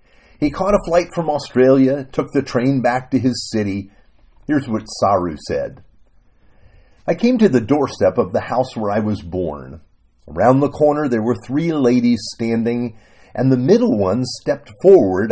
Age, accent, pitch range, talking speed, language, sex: 50-69, American, 100-155 Hz, 170 wpm, English, male